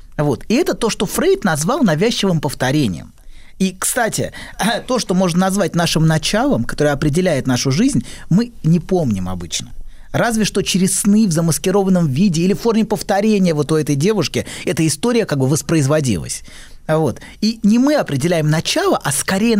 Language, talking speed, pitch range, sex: Russian, 160 wpm, 155-220 Hz, male